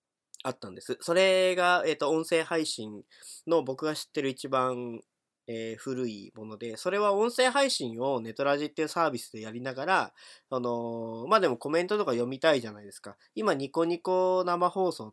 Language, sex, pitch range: Japanese, male, 120-170 Hz